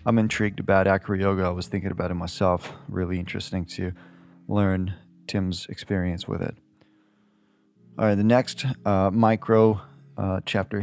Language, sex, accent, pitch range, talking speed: English, male, American, 95-115 Hz, 145 wpm